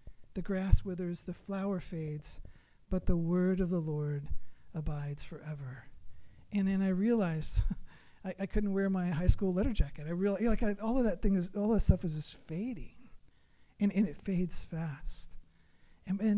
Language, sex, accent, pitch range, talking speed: English, male, American, 155-195 Hz, 185 wpm